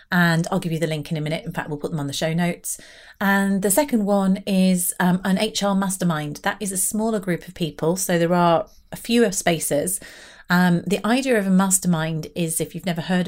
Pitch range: 165-200 Hz